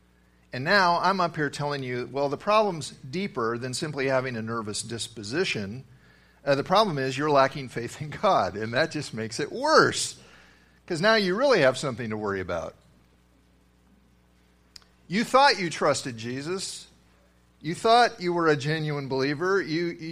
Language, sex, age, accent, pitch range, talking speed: English, male, 50-69, American, 95-155 Hz, 160 wpm